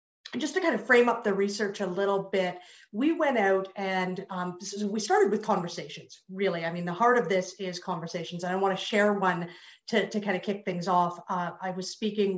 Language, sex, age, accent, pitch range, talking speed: English, female, 40-59, American, 180-220 Hz, 235 wpm